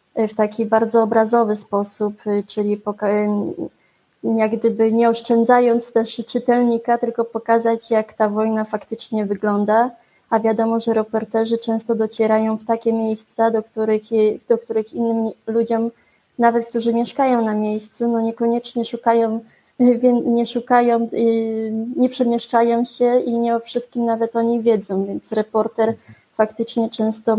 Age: 20-39